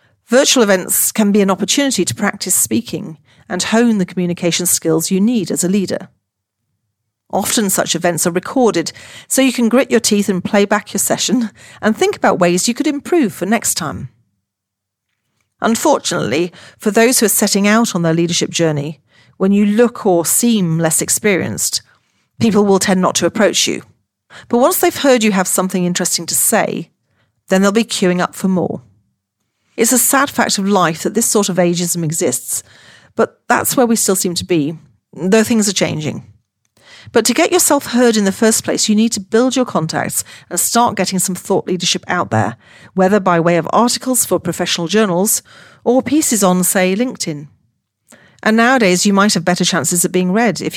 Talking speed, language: 185 wpm, English